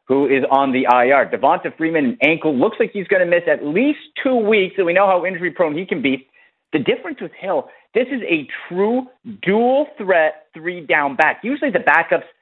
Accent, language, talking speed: American, English, 210 wpm